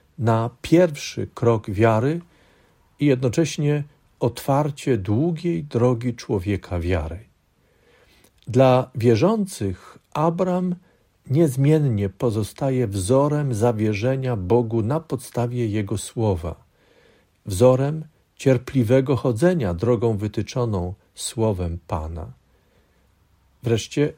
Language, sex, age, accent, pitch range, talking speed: Polish, male, 50-69, native, 105-150 Hz, 75 wpm